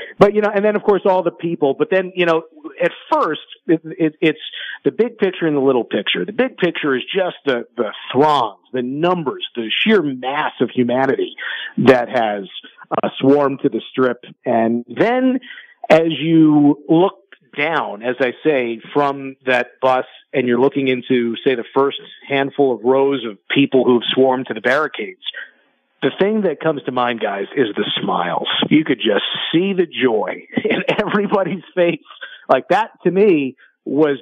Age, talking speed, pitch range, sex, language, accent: 50-69, 175 wpm, 130-170 Hz, male, English, American